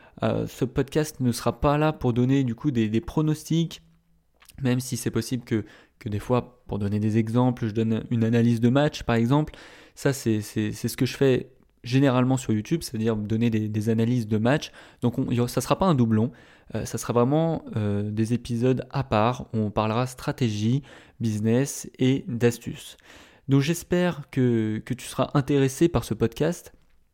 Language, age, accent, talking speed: French, 20-39, French, 190 wpm